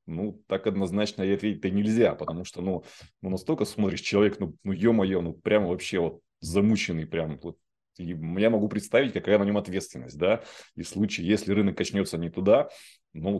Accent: native